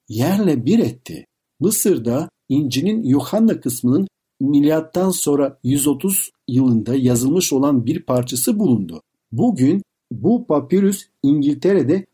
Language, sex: Turkish, male